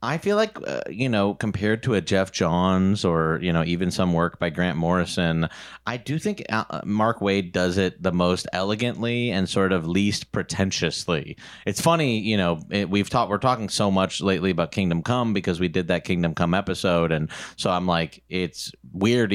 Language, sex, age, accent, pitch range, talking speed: English, male, 30-49, American, 90-110 Hz, 195 wpm